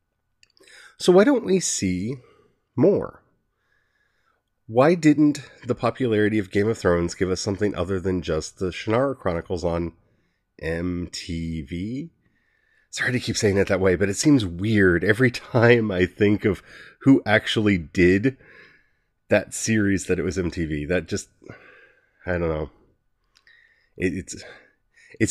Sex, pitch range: male, 90-120 Hz